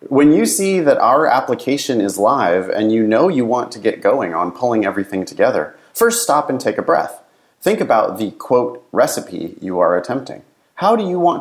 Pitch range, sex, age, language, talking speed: 110-165 Hz, male, 30-49, English, 200 wpm